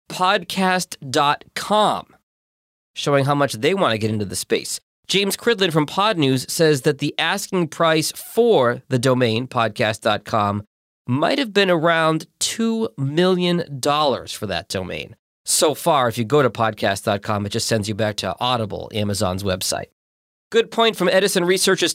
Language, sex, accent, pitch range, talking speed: English, male, American, 125-180 Hz, 150 wpm